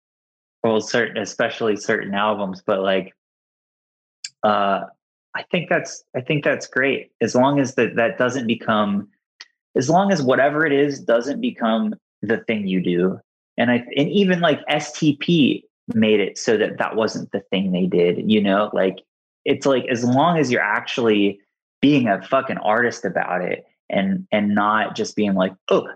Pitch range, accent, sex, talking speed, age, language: 100-135 Hz, American, male, 170 wpm, 20-39, English